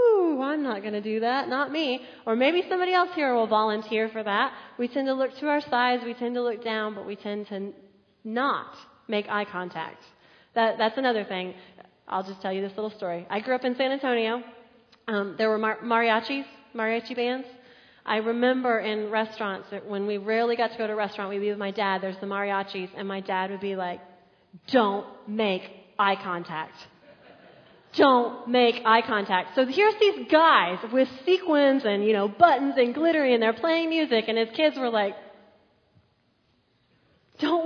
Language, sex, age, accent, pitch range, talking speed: English, female, 30-49, American, 200-265 Hz, 185 wpm